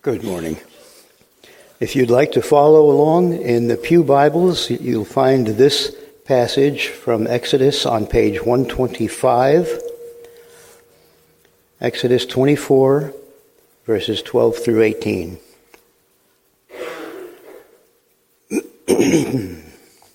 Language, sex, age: English, male, 60-79